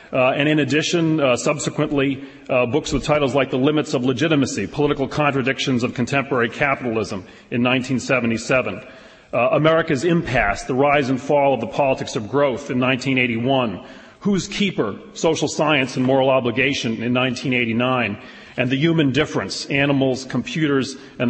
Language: English